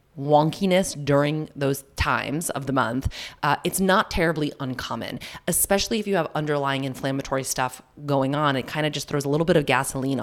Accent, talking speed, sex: American, 180 wpm, female